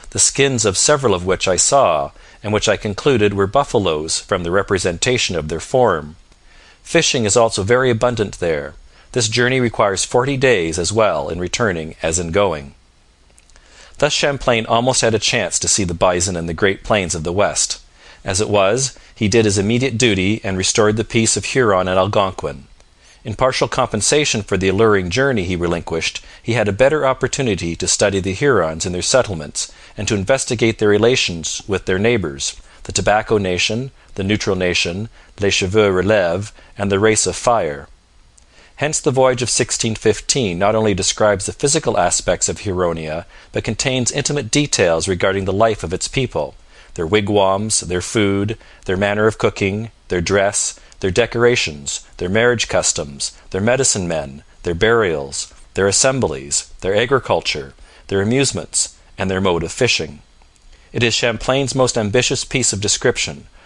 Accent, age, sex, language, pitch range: American, 40-59, male, Chinese, 90-120 Hz